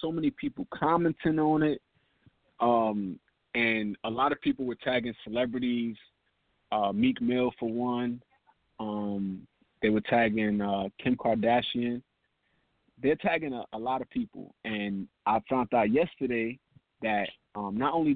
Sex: male